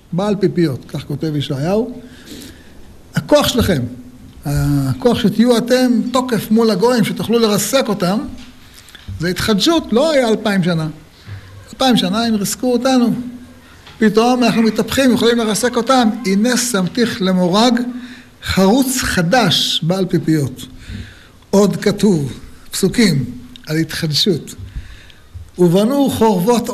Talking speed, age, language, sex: 105 wpm, 60-79, Hebrew, male